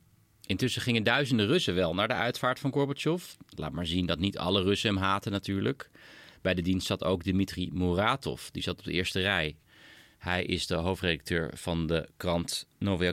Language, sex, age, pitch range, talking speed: Dutch, male, 40-59, 85-110 Hz, 185 wpm